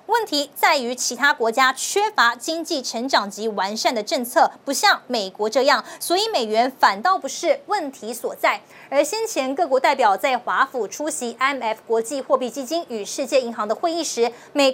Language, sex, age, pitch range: Chinese, female, 20-39, 240-330 Hz